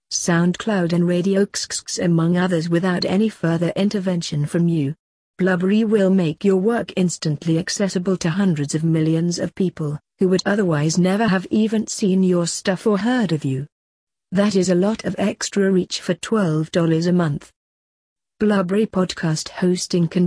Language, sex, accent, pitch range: English, female, British, 165-195 Hz